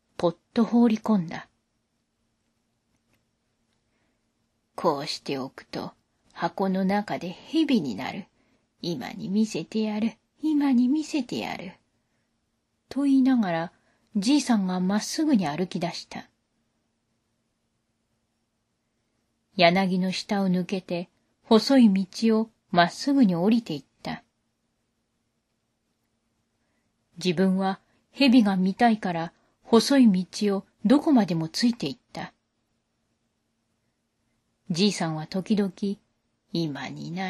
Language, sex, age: Japanese, female, 40-59